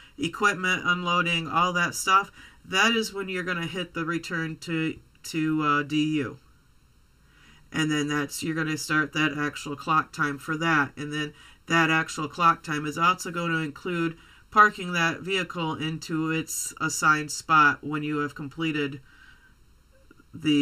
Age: 40-59